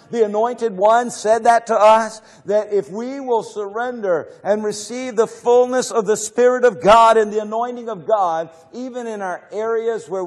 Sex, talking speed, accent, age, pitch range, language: male, 180 wpm, American, 50-69, 175-215 Hz, English